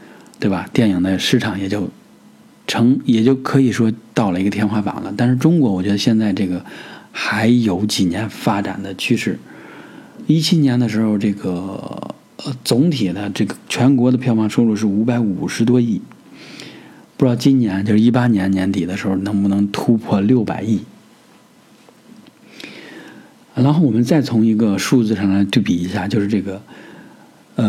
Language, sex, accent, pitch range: Chinese, male, native, 100-130 Hz